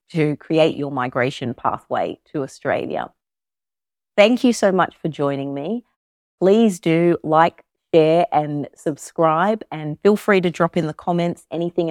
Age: 40-59